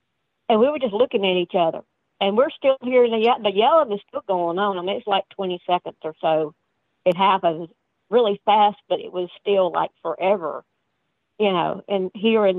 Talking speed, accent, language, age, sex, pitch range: 205 wpm, American, English, 50-69, female, 175-215 Hz